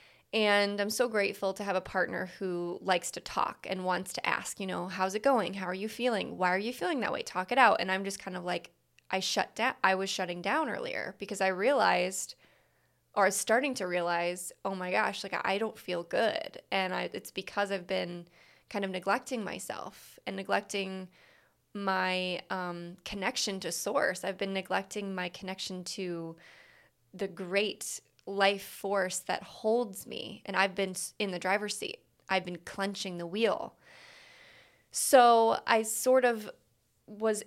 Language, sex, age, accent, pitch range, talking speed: English, female, 20-39, American, 180-205 Hz, 175 wpm